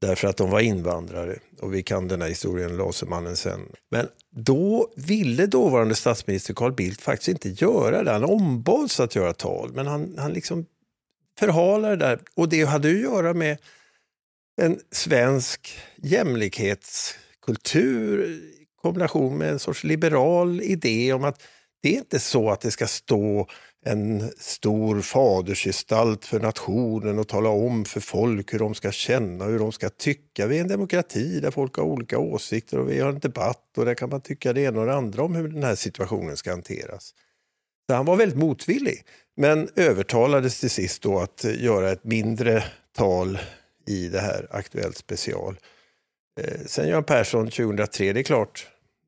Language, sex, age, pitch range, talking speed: Swedish, male, 50-69, 105-150 Hz, 170 wpm